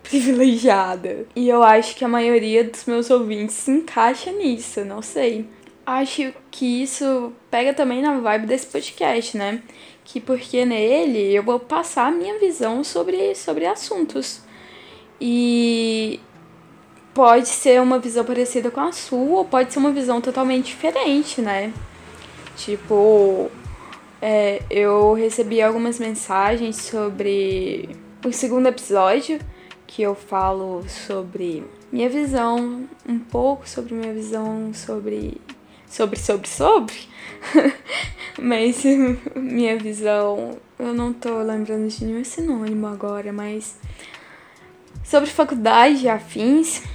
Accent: Brazilian